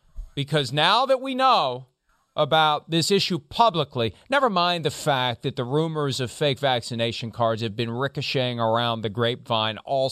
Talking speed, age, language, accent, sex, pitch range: 160 wpm, 40-59, English, American, male, 135-180 Hz